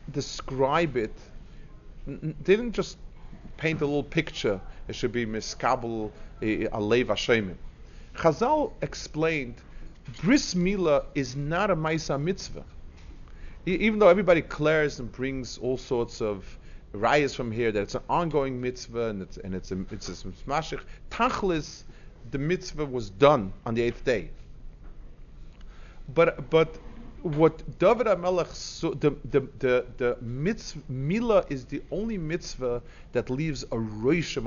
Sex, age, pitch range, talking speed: male, 40-59, 120-165 Hz, 140 wpm